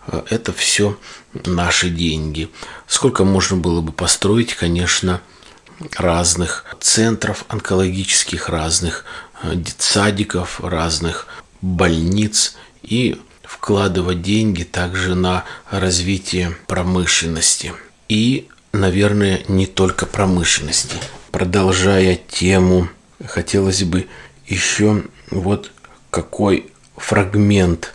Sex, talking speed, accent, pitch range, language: male, 80 wpm, native, 90-105 Hz, Russian